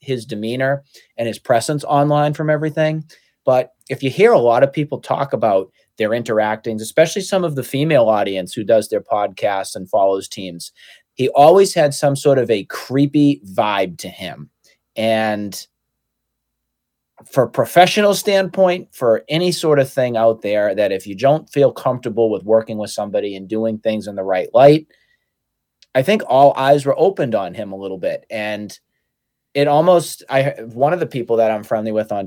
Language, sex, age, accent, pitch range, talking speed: English, male, 30-49, American, 110-145 Hz, 175 wpm